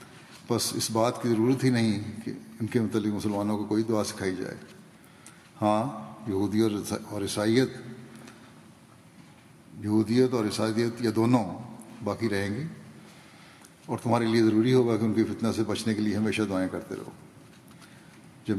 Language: Urdu